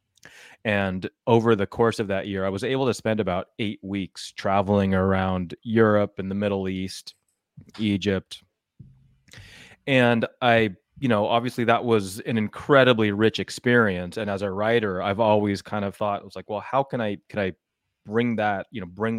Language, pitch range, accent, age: English, 95-115 Hz, American, 30-49